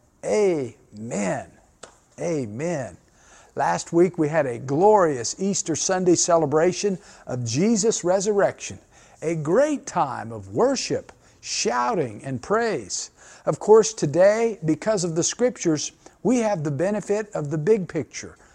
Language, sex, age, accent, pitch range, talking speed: English, male, 50-69, American, 150-210 Hz, 120 wpm